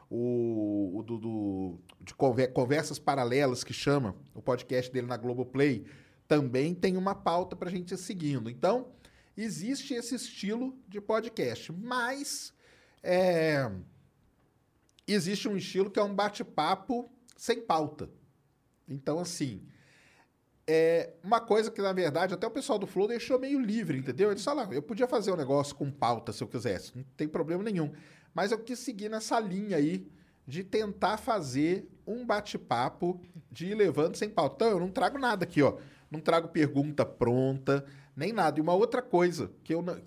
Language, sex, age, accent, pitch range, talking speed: Portuguese, male, 40-59, Brazilian, 130-210 Hz, 165 wpm